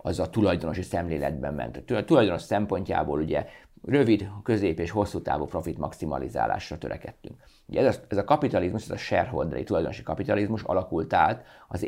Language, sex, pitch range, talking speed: Hungarian, male, 85-105 Hz, 145 wpm